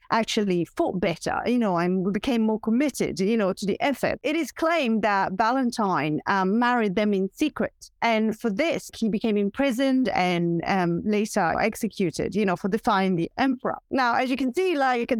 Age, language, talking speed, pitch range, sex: 40-59, English, 180 wpm, 200-255 Hz, female